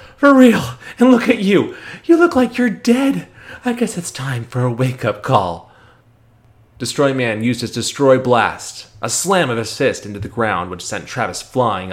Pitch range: 100-120 Hz